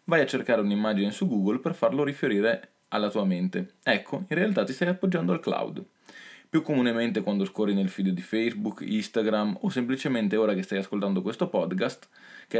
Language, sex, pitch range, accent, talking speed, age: Italian, male, 95-130 Hz, native, 180 wpm, 20-39